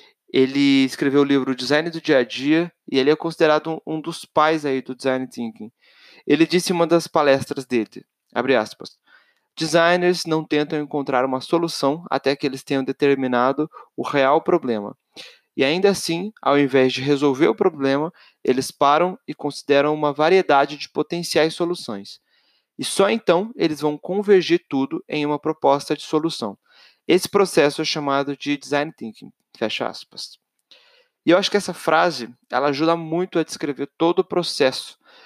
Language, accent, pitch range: Portuguese, Brazilian, 140-175 Hz